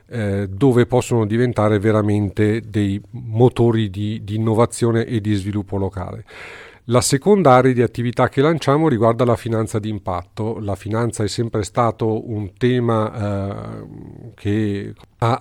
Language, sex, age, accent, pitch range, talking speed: Italian, male, 40-59, native, 105-125 Hz, 135 wpm